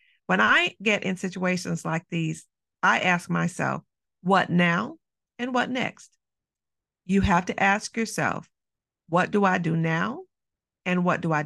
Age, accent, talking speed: 50-69, American, 150 wpm